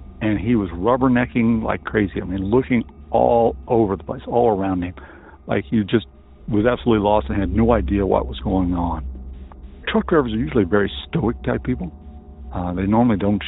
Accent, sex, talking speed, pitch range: American, male, 185 wpm, 80-115 Hz